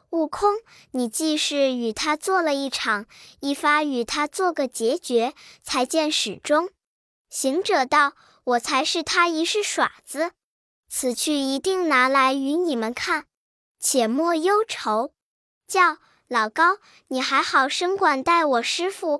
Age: 10-29